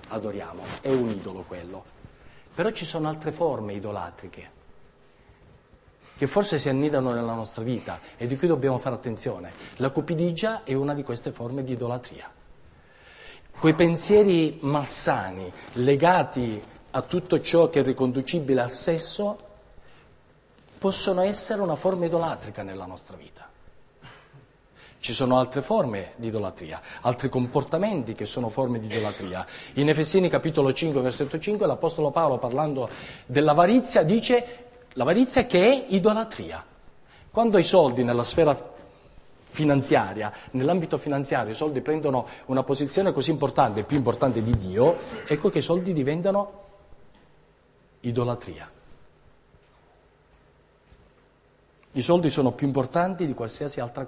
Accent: native